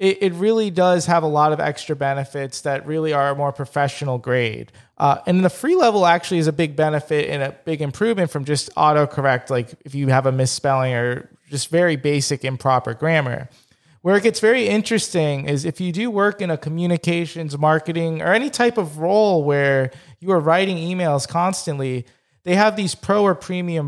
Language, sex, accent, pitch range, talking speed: English, male, American, 140-175 Hz, 190 wpm